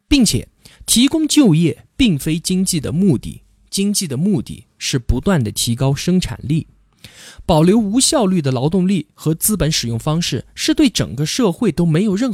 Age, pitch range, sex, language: 20-39, 125-205 Hz, male, Chinese